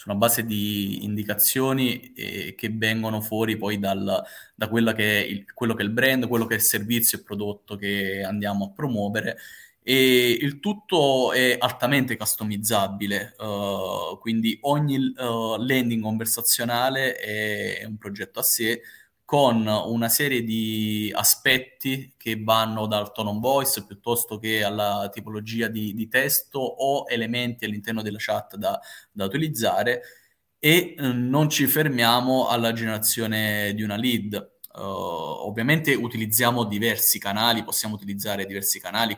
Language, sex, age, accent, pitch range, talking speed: Italian, male, 20-39, native, 105-125 Hz, 140 wpm